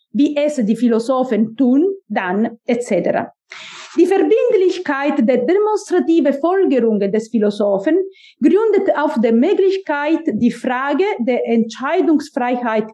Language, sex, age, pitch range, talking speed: English, female, 40-59, 235-335 Hz, 100 wpm